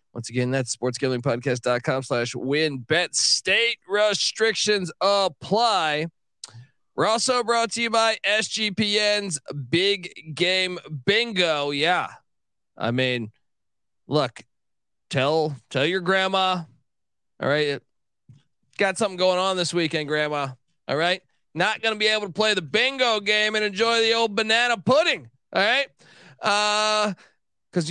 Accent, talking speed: American, 125 wpm